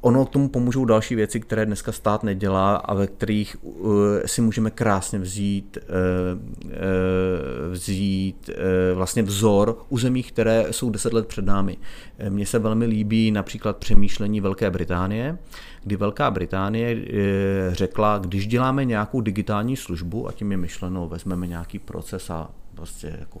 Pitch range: 95-115 Hz